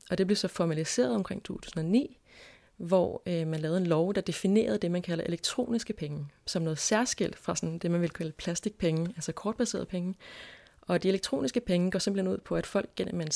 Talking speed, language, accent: 200 wpm, Danish, native